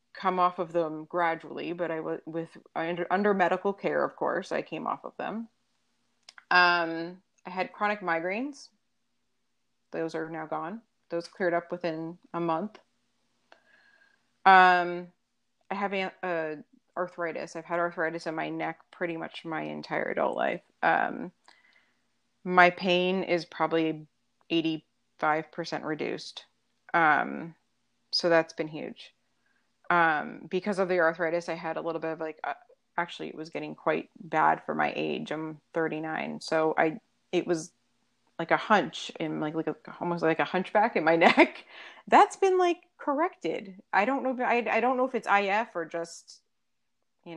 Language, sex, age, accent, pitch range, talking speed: English, female, 30-49, American, 160-200 Hz, 155 wpm